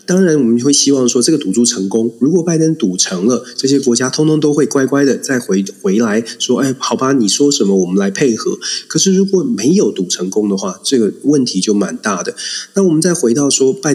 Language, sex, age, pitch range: Chinese, male, 30-49, 110-155 Hz